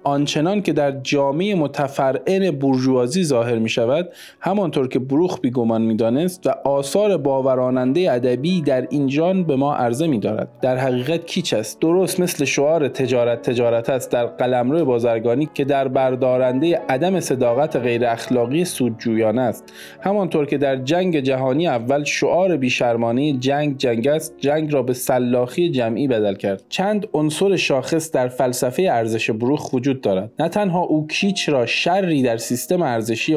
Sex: male